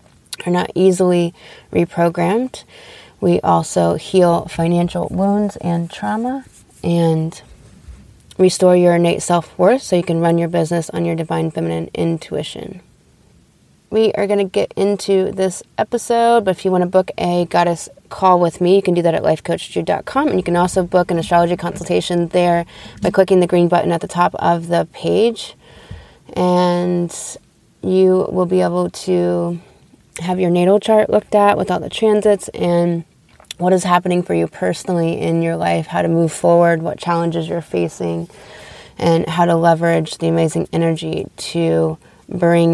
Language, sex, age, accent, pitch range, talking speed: English, female, 20-39, American, 165-185 Hz, 160 wpm